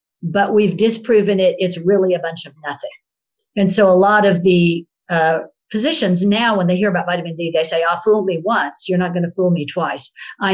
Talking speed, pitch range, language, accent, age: 230 wpm, 170-200 Hz, English, American, 50-69